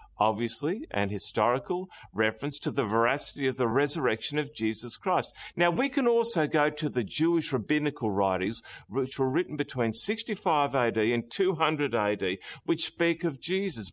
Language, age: English, 50-69